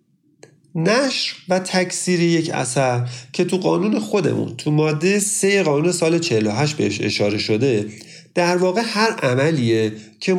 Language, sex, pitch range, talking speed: Persian, male, 120-185 Hz, 135 wpm